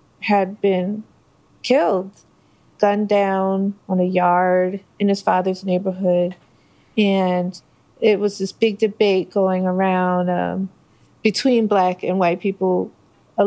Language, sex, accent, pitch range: English, female, American, 185-215 Hz